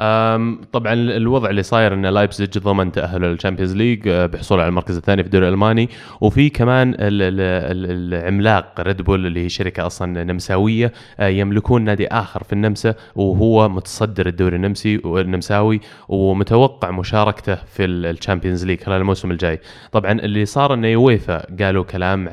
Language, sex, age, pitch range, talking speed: Arabic, male, 20-39, 95-110 Hz, 140 wpm